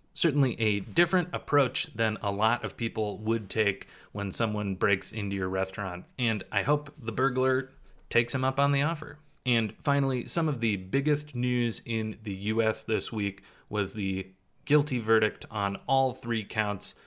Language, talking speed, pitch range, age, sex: English, 170 wpm, 100-125 Hz, 30-49, male